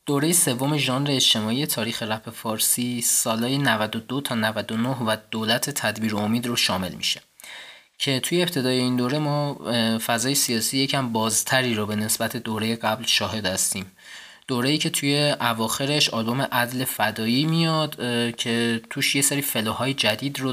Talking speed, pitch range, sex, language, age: 150 wpm, 115-140 Hz, male, Persian, 20-39